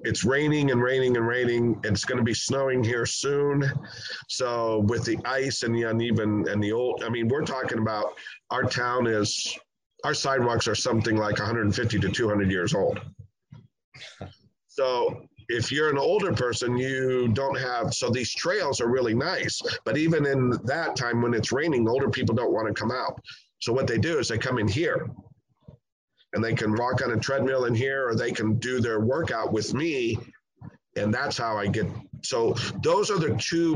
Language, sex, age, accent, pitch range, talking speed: English, male, 50-69, American, 110-135 Hz, 185 wpm